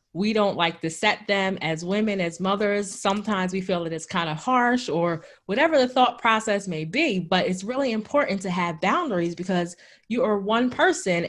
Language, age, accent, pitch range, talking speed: English, 20-39, American, 175-210 Hz, 195 wpm